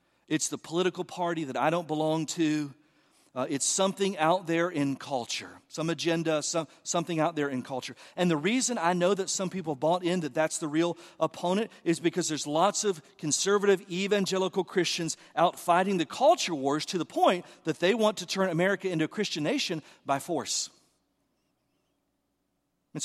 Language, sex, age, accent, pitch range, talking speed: English, male, 50-69, American, 155-195 Hz, 175 wpm